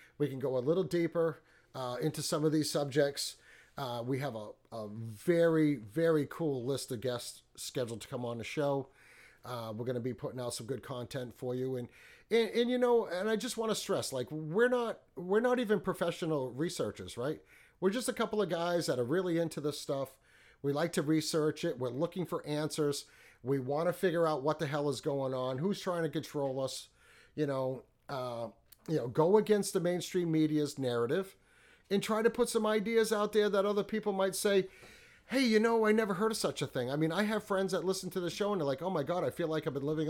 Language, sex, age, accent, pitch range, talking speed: English, male, 40-59, American, 135-190 Hz, 230 wpm